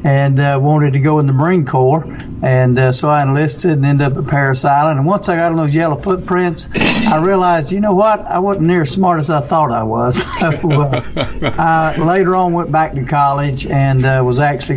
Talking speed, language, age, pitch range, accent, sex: 220 wpm, English, 60-79, 135-160 Hz, American, male